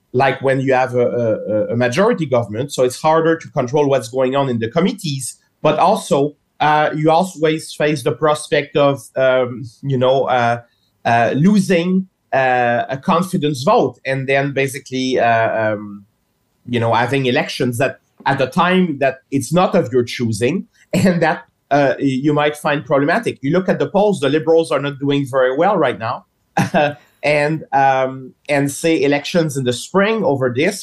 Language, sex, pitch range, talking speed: English, male, 130-160 Hz, 170 wpm